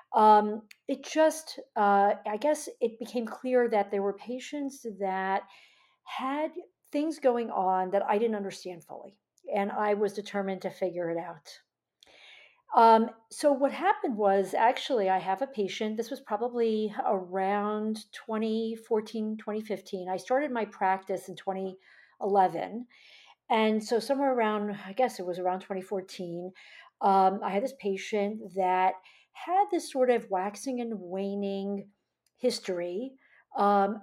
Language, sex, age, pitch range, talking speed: English, female, 50-69, 190-250 Hz, 140 wpm